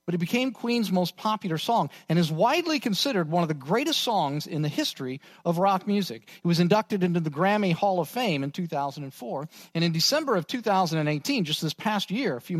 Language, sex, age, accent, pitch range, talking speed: English, male, 40-59, American, 150-195 Hz, 210 wpm